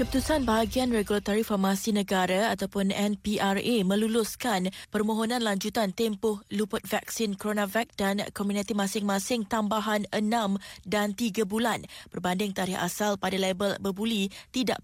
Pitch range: 200-235 Hz